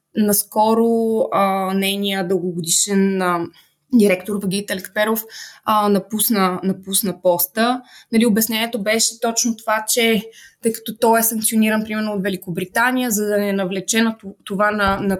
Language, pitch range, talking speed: Bulgarian, 195-230 Hz, 120 wpm